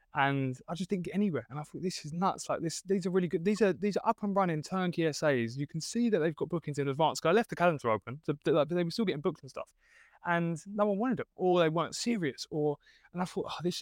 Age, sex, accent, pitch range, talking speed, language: 20-39, male, British, 135-175 Hz, 280 wpm, English